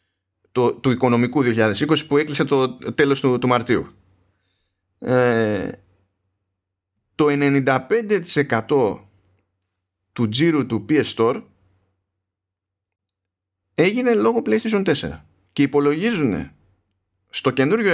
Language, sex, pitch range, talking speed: Greek, male, 95-135 Hz, 85 wpm